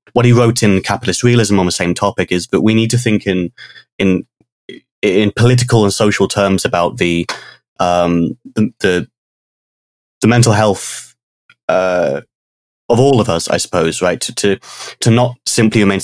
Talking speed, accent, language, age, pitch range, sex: 165 wpm, British, English, 20-39, 95-115 Hz, male